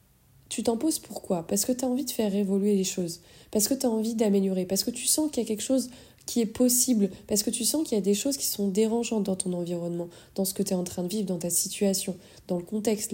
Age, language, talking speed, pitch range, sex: 20-39, French, 285 wpm, 185-225 Hz, female